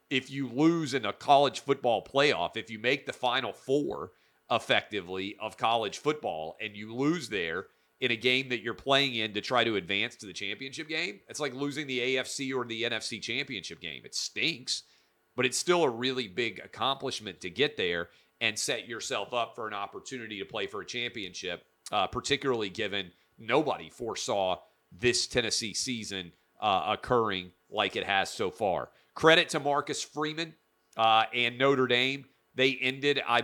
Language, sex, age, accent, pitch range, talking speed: English, male, 40-59, American, 110-130 Hz, 175 wpm